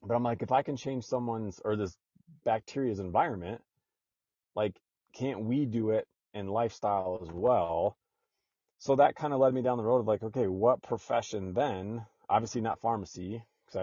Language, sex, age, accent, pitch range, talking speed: English, male, 30-49, American, 100-120 Hz, 175 wpm